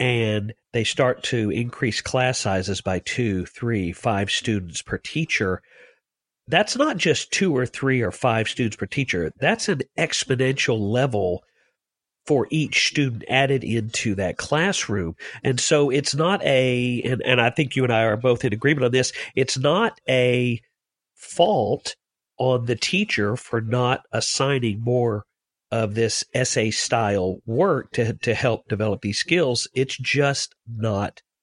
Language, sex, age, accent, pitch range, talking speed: English, male, 50-69, American, 115-140 Hz, 150 wpm